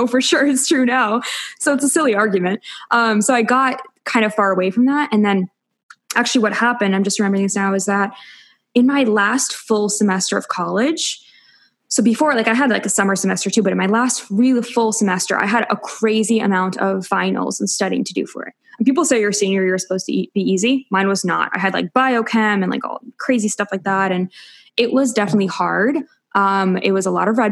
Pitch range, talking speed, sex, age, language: 195-235 Hz, 230 wpm, female, 10-29, English